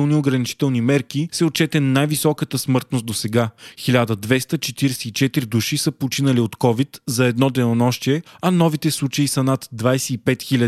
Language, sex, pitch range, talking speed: Bulgarian, male, 125-150 Hz, 130 wpm